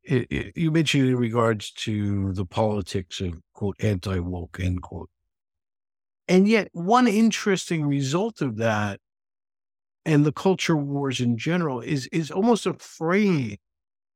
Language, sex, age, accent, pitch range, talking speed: English, male, 60-79, American, 105-130 Hz, 135 wpm